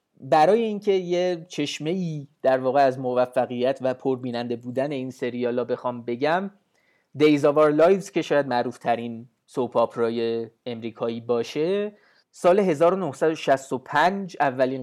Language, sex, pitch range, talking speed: Persian, male, 125-165 Hz, 115 wpm